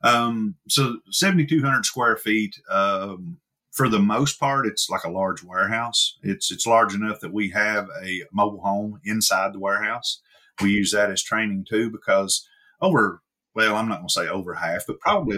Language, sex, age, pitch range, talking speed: English, male, 30-49, 95-120 Hz, 180 wpm